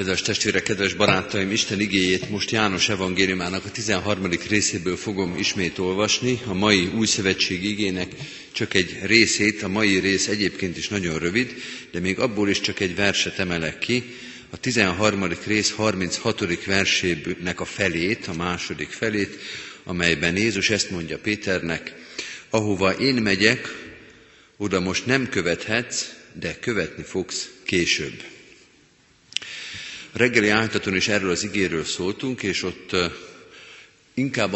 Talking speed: 130 wpm